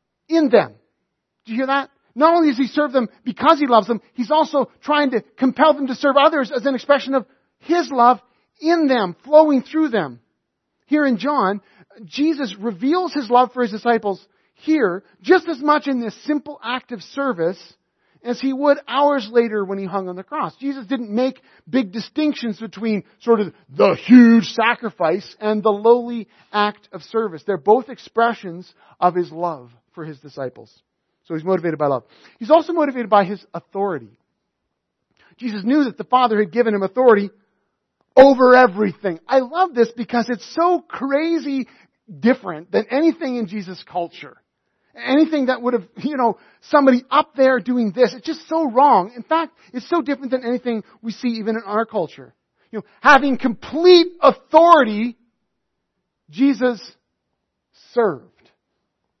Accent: American